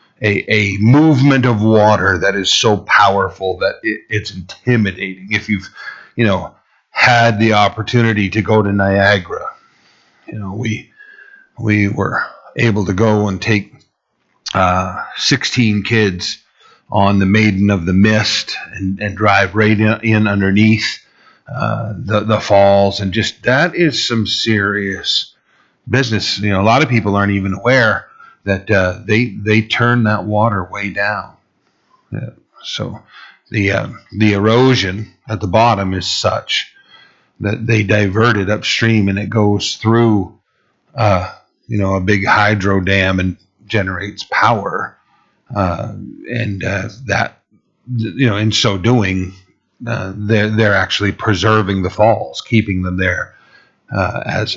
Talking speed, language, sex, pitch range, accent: 140 wpm, English, male, 100-115 Hz, American